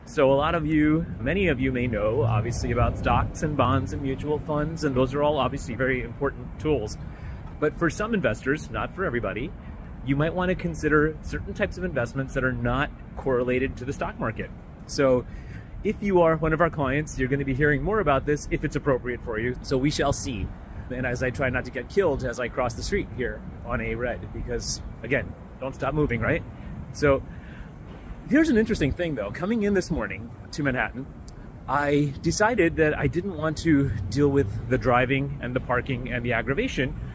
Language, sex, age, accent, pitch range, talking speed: English, male, 30-49, American, 120-150 Hz, 205 wpm